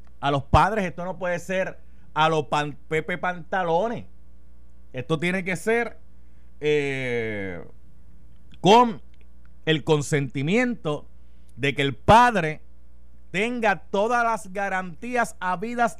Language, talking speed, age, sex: Spanish, 105 wpm, 30-49, male